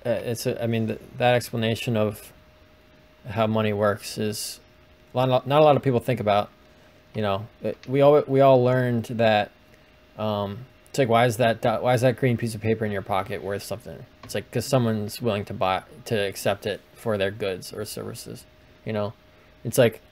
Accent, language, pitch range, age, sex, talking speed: American, English, 105-130 Hz, 20-39, male, 200 wpm